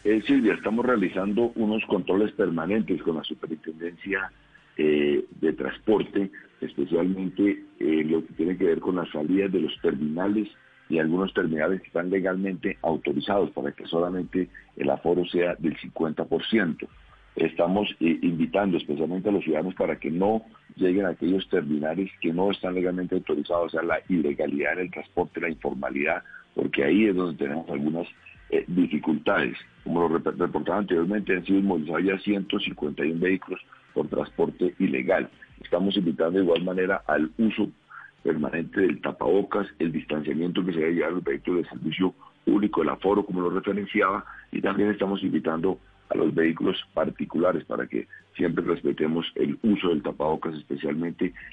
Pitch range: 80-95 Hz